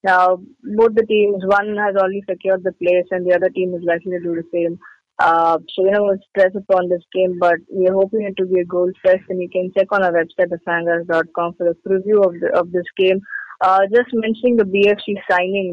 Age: 20-39